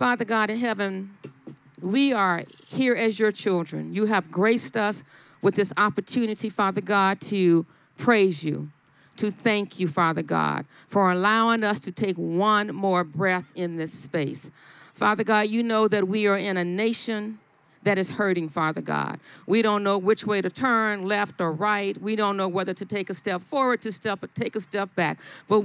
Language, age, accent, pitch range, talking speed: English, 50-69, American, 185-245 Hz, 185 wpm